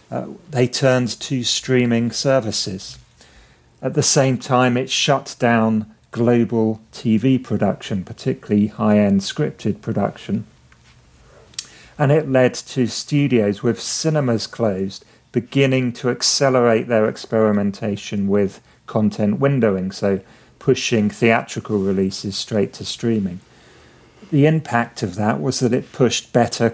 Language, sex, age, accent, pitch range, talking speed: English, male, 40-59, British, 105-125 Hz, 115 wpm